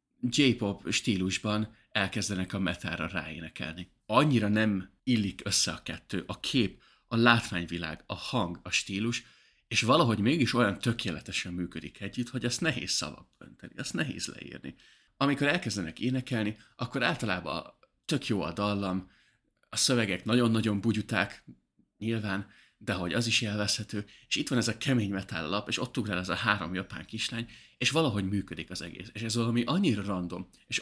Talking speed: 155 wpm